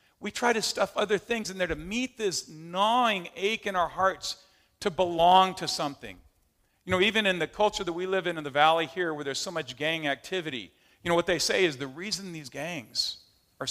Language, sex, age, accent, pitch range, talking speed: English, male, 40-59, American, 125-175 Hz, 225 wpm